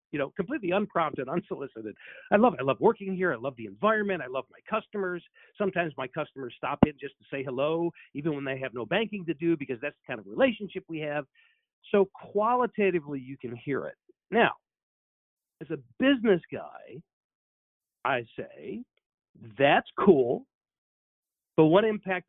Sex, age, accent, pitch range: male, 50-69, American, 125-190 Hz